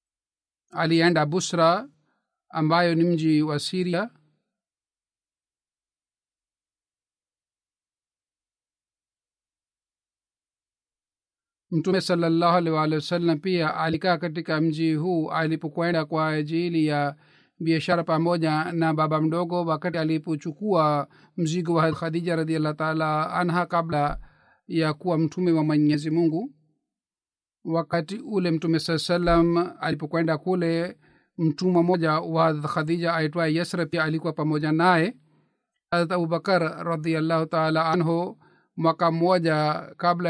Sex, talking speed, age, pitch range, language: male, 95 wpm, 50-69, 155-175 Hz, Swahili